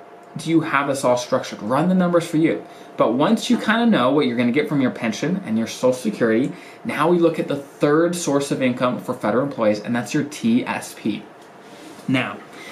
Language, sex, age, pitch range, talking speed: English, male, 20-39, 125-180 Hz, 215 wpm